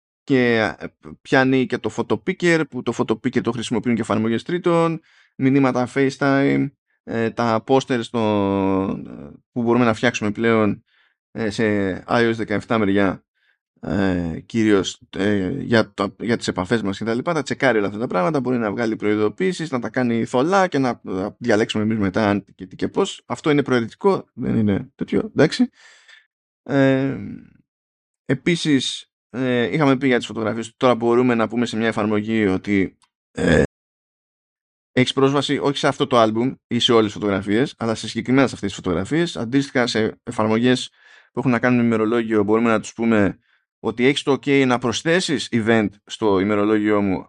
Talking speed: 155 wpm